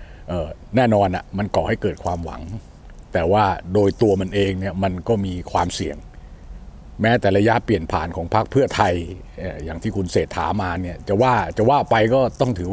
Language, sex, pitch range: Thai, male, 90-110 Hz